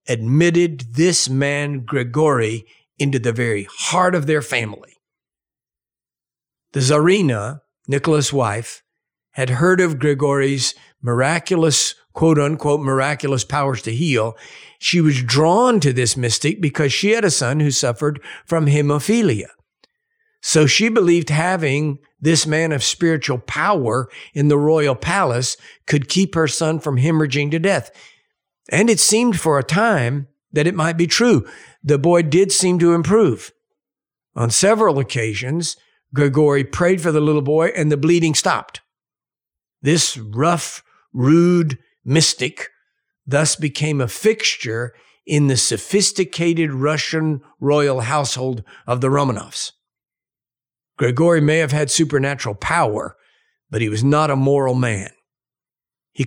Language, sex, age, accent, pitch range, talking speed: English, male, 50-69, American, 135-170 Hz, 130 wpm